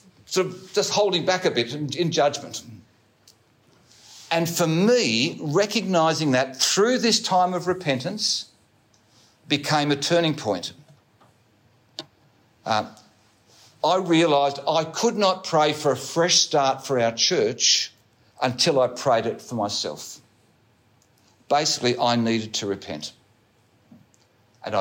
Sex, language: male, English